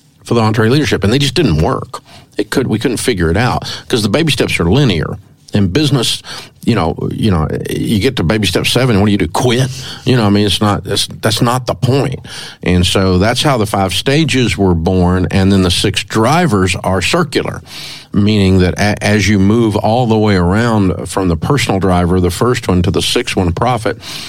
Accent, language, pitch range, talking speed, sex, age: American, English, 90-120 Hz, 215 wpm, male, 50-69